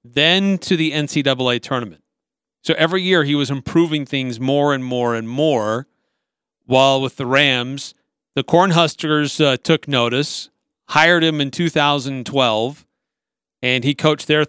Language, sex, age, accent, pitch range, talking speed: English, male, 40-59, American, 130-165 Hz, 140 wpm